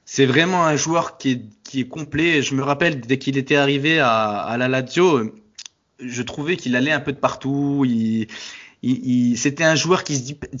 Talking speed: 205 wpm